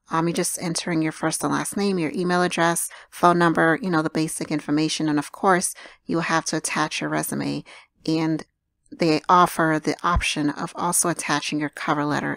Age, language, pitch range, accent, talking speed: 30-49, English, 165-195 Hz, American, 195 wpm